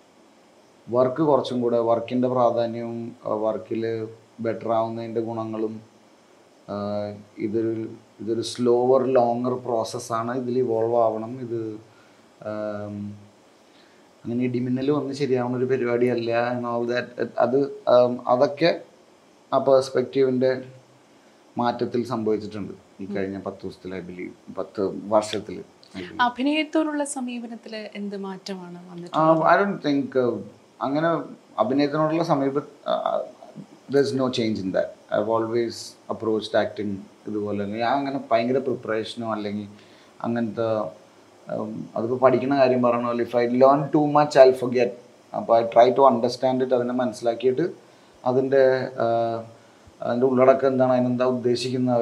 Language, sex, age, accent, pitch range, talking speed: Malayalam, male, 30-49, native, 115-130 Hz, 90 wpm